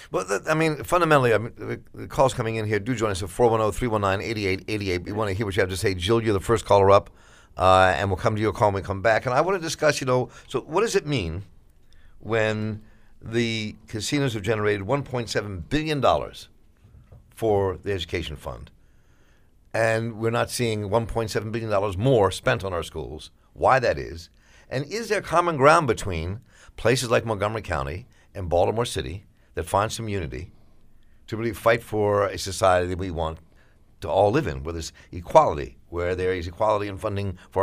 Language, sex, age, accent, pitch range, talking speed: English, male, 60-79, American, 95-115 Hz, 190 wpm